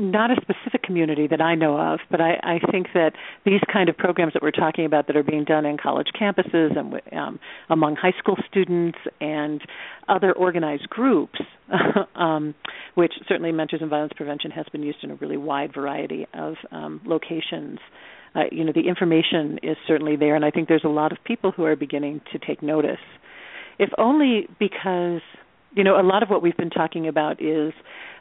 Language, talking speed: English, 195 wpm